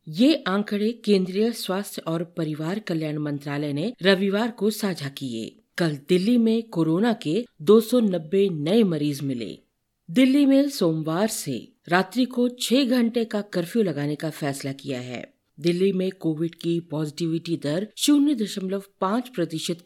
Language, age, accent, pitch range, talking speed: Hindi, 50-69, native, 155-205 Hz, 135 wpm